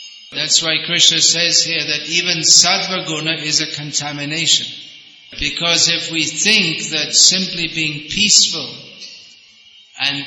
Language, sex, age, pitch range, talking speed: English, male, 50-69, 150-175 Hz, 115 wpm